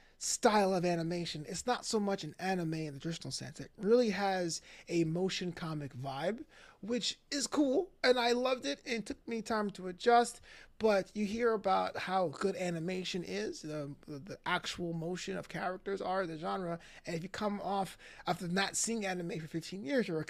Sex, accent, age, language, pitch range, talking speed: male, American, 20-39, English, 160-210 Hz, 195 wpm